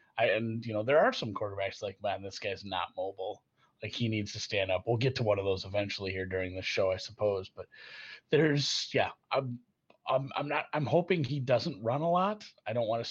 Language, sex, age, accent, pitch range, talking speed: English, male, 30-49, American, 105-130 Hz, 235 wpm